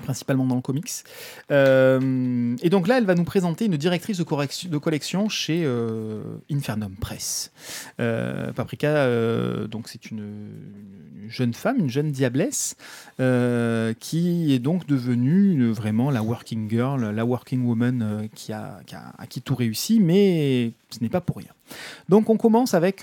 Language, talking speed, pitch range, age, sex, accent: French, 170 wpm, 115-160 Hz, 30-49, male, French